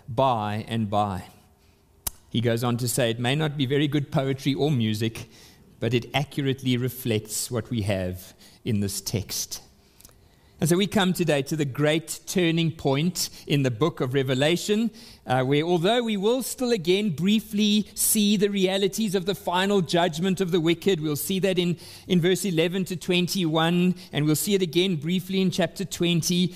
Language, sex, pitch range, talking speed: English, male, 140-190 Hz, 175 wpm